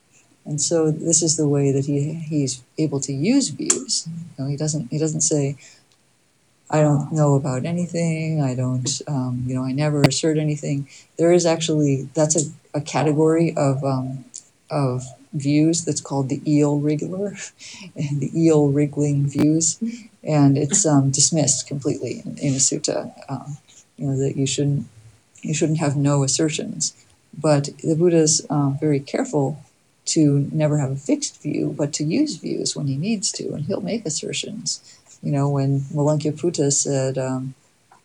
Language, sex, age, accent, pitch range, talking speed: English, female, 50-69, American, 135-155 Hz, 165 wpm